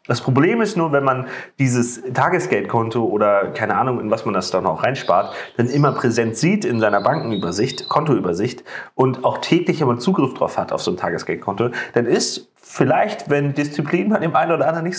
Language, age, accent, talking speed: German, 30-49, German, 190 wpm